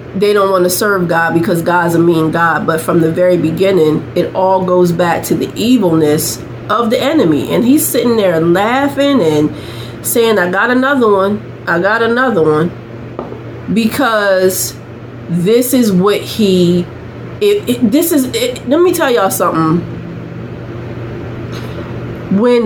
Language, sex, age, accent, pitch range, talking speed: English, female, 30-49, American, 165-225 Hz, 150 wpm